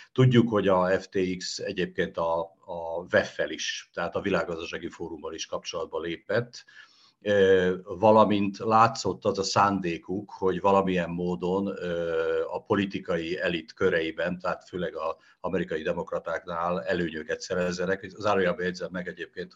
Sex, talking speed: male, 130 wpm